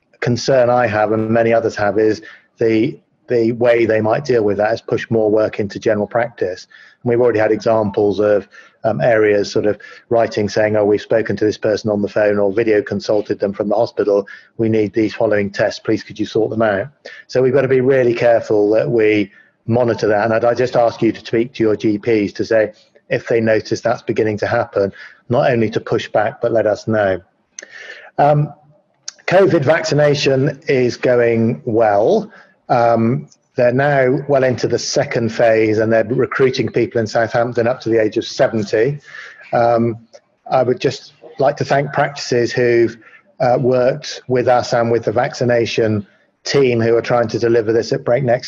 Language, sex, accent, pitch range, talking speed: English, male, British, 110-125 Hz, 190 wpm